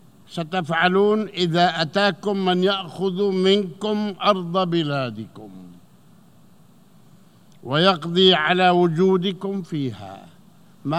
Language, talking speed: Arabic, 70 wpm